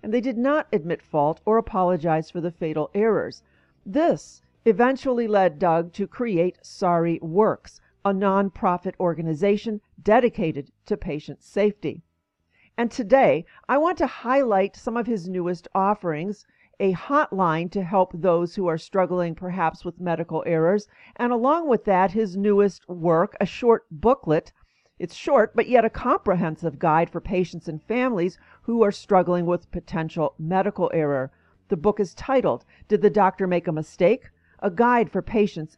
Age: 50-69